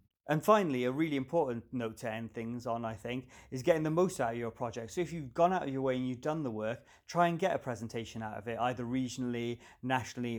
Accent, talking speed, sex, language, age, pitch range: British, 255 wpm, male, English, 30-49, 115-135 Hz